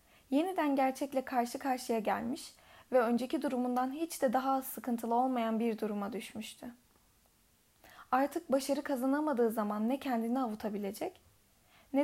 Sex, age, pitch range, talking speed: female, 10-29, 230-275 Hz, 120 wpm